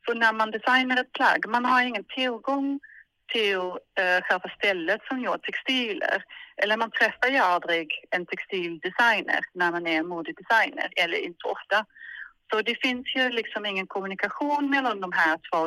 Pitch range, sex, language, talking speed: 180-245 Hz, female, Swedish, 160 wpm